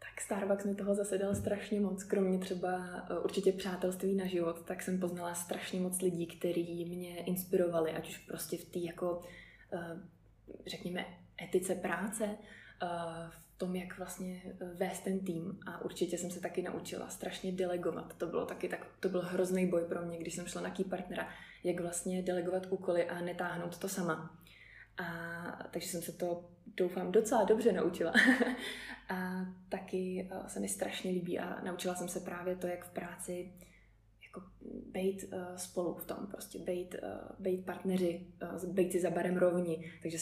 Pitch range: 175-185 Hz